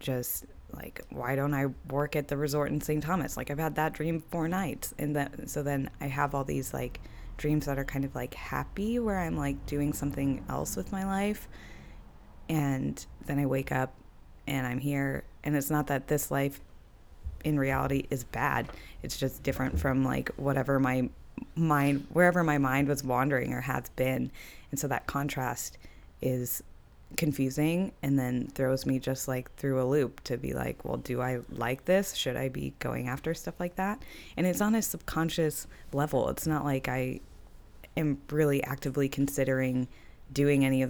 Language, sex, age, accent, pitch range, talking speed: English, female, 20-39, American, 130-150 Hz, 185 wpm